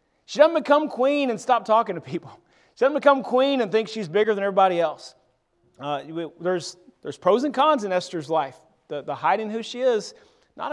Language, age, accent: English, 30-49, American